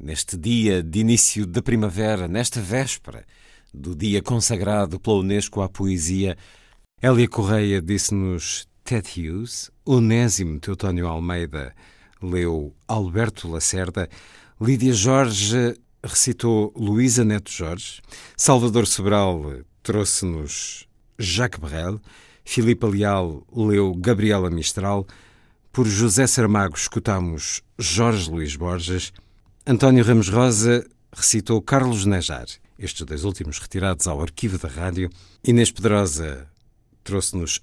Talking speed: 105 wpm